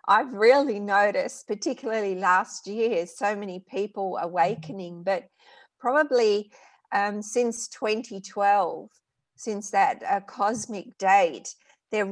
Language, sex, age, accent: English, female, 50-69, Australian